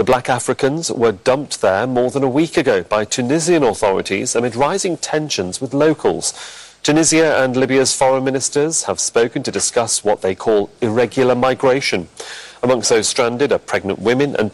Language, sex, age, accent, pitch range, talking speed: English, male, 40-59, British, 115-155 Hz, 165 wpm